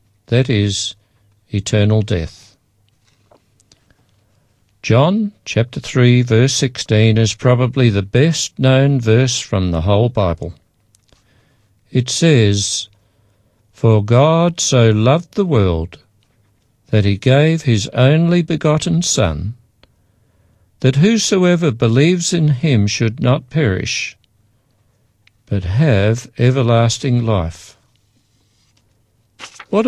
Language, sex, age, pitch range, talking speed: English, male, 60-79, 105-125 Hz, 90 wpm